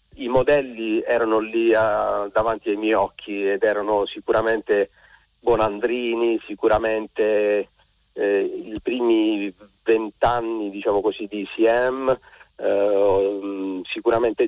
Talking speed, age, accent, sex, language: 95 wpm, 40-59, native, male, Italian